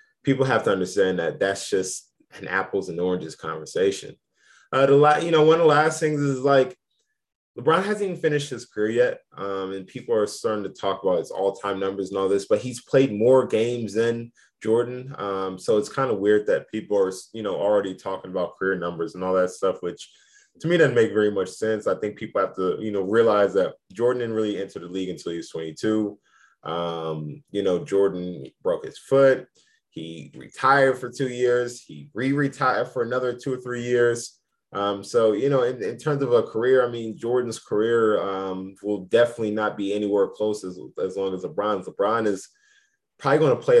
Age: 20-39